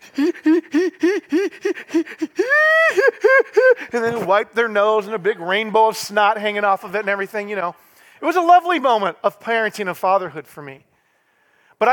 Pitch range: 170-240 Hz